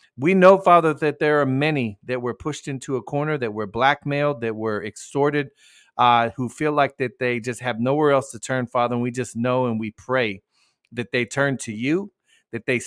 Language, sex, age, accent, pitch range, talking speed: English, male, 40-59, American, 115-140 Hz, 215 wpm